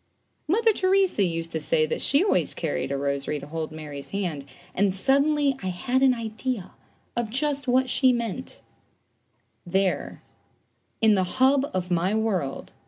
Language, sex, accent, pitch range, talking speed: English, female, American, 155-260 Hz, 155 wpm